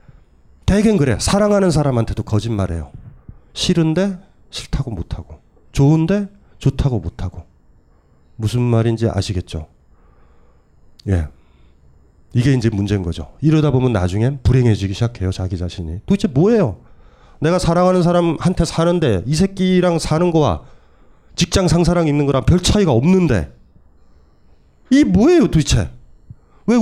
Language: Korean